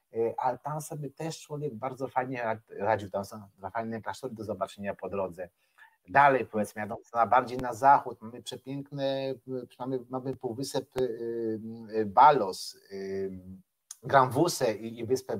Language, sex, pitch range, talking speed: Polish, male, 110-140 Hz, 120 wpm